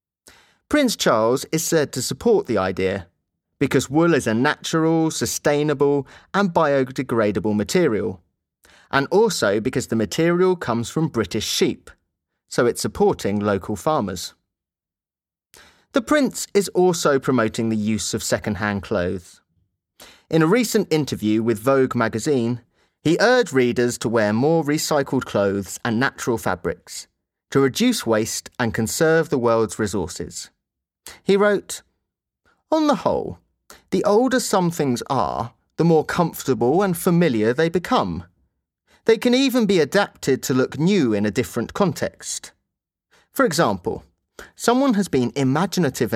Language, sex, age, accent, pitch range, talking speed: Indonesian, male, 30-49, British, 110-170 Hz, 135 wpm